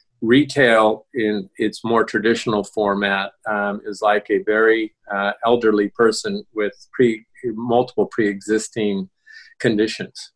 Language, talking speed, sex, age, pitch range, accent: English, 105 wpm, male, 40-59, 100-120 Hz, American